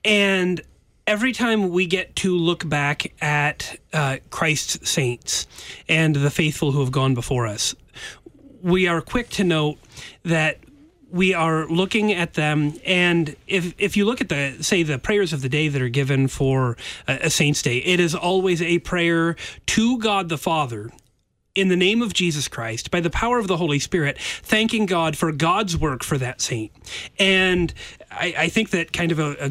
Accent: American